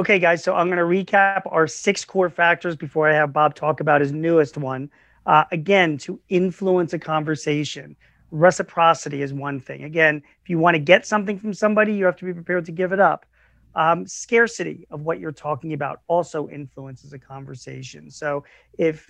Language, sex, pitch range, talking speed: English, male, 150-185 Hz, 190 wpm